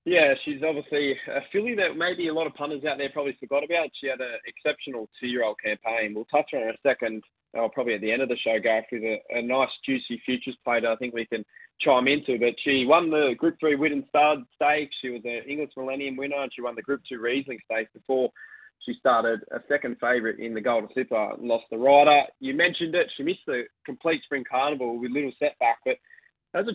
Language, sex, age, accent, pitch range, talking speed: English, male, 20-39, Australian, 125-150 Hz, 230 wpm